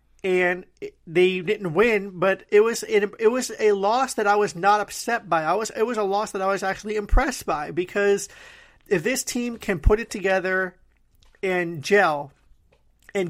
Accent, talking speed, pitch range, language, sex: American, 185 wpm, 180-215 Hz, English, male